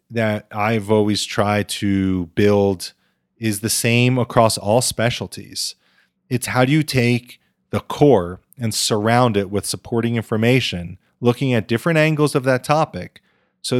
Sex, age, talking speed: male, 30-49, 145 wpm